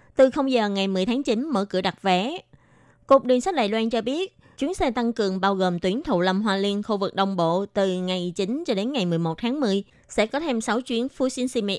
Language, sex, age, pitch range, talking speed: Vietnamese, female, 20-39, 185-245 Hz, 245 wpm